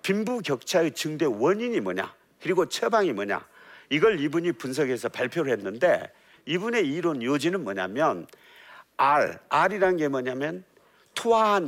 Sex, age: male, 50-69